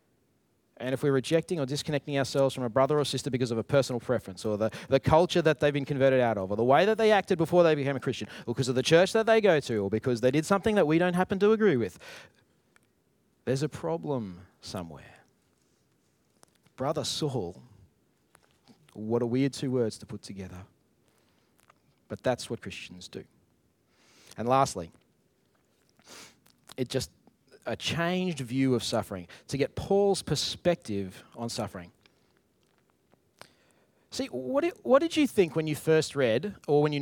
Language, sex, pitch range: English, male, 125-170 Hz